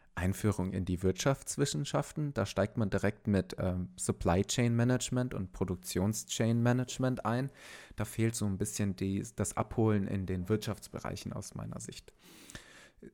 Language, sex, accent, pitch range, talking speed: German, male, German, 95-120 Hz, 145 wpm